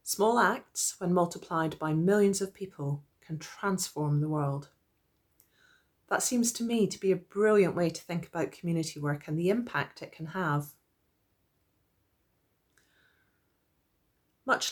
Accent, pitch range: British, 150-195 Hz